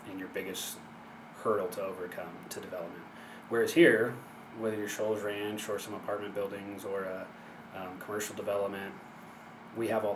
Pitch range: 100-110 Hz